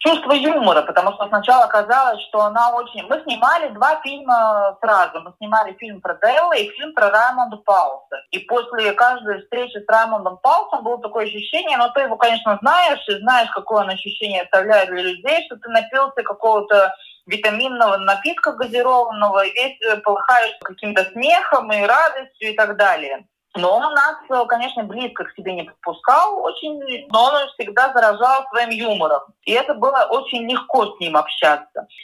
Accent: native